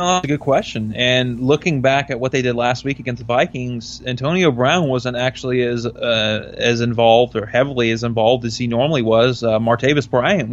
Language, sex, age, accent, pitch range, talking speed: English, male, 20-39, American, 120-135 Hz, 200 wpm